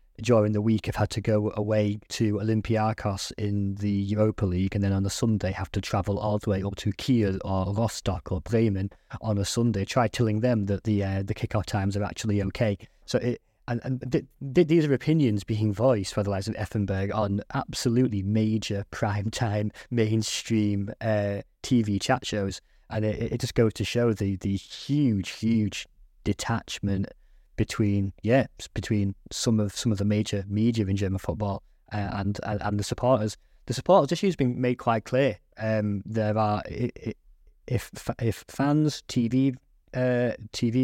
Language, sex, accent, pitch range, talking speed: English, male, British, 105-125 Hz, 175 wpm